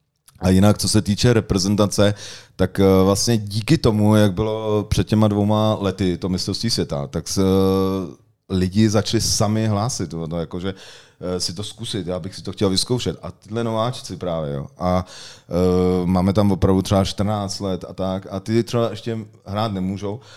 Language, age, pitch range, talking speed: Czech, 30-49, 95-110 Hz, 165 wpm